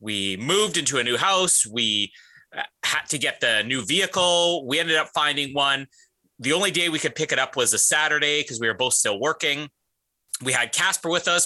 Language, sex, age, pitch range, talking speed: English, male, 30-49, 140-200 Hz, 210 wpm